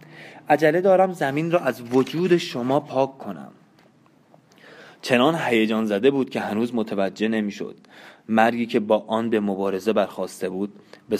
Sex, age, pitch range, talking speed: male, 20-39, 105-120 Hz, 140 wpm